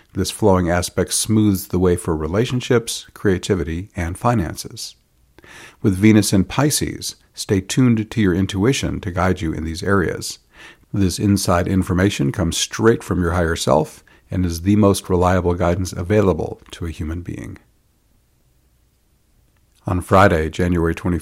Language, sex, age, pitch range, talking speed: English, male, 50-69, 90-105 Hz, 140 wpm